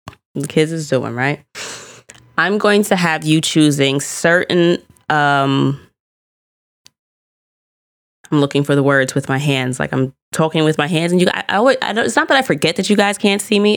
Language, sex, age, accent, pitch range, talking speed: English, female, 20-39, American, 145-205 Hz, 185 wpm